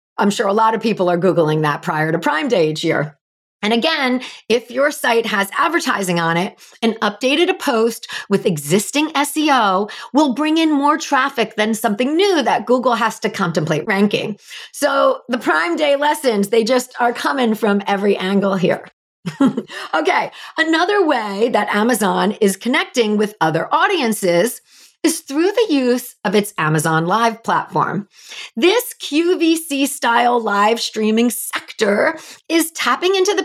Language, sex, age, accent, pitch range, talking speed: English, female, 40-59, American, 200-290 Hz, 155 wpm